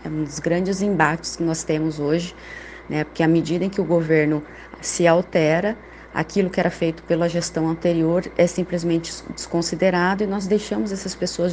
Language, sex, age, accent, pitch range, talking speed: Portuguese, female, 20-39, Brazilian, 160-180 Hz, 170 wpm